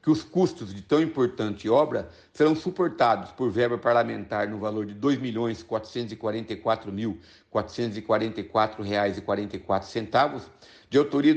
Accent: Brazilian